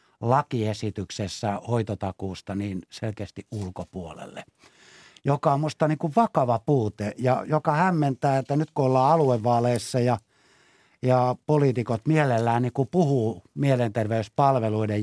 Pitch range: 105-145 Hz